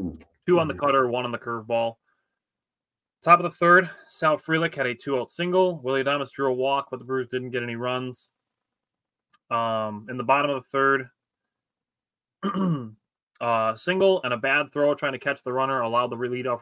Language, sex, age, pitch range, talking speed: English, male, 20-39, 115-140 Hz, 190 wpm